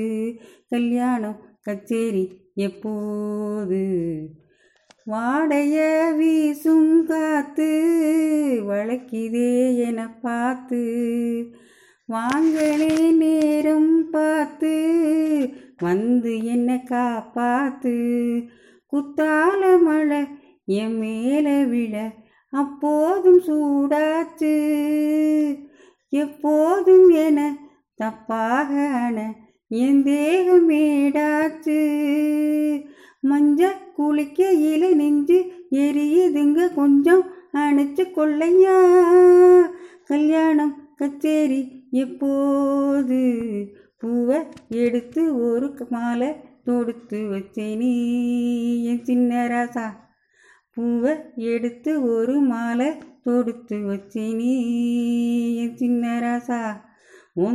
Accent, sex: native, female